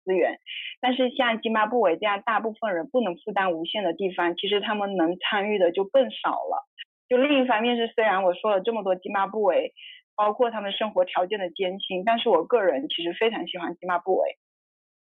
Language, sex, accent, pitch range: Chinese, female, native, 195-255 Hz